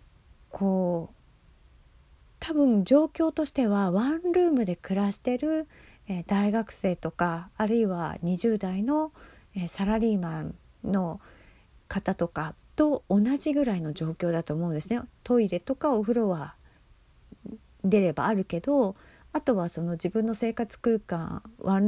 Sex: female